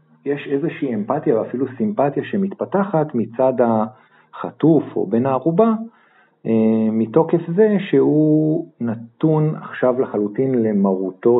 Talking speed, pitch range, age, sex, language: 95 wpm, 105-140 Hz, 40-59, male, Hebrew